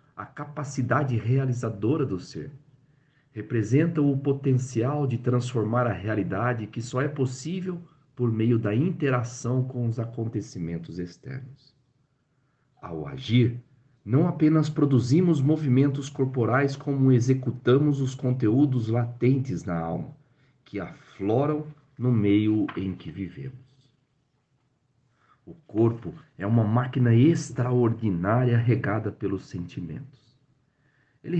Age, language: 50-69, Portuguese